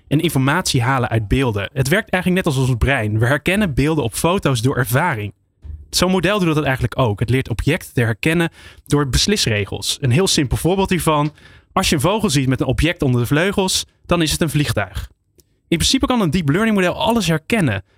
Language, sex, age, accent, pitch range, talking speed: Dutch, male, 20-39, Dutch, 120-170 Hz, 205 wpm